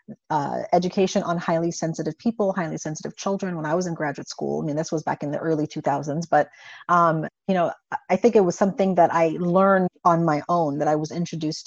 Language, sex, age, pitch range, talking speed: English, female, 40-59, 170-220 Hz, 220 wpm